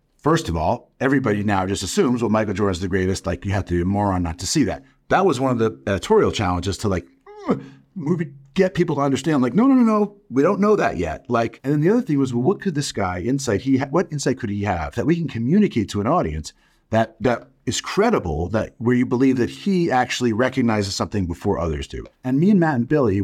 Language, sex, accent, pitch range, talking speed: English, male, American, 105-150 Hz, 250 wpm